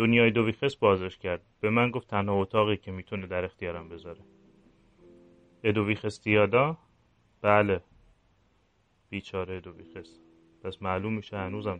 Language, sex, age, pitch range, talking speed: Persian, male, 30-49, 90-115 Hz, 115 wpm